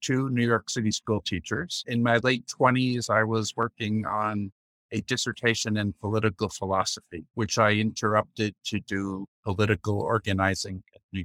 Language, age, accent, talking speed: English, 50-69, American, 150 wpm